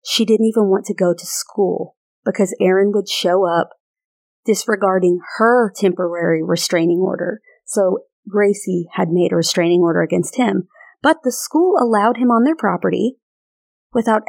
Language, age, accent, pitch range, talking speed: English, 30-49, American, 185-225 Hz, 150 wpm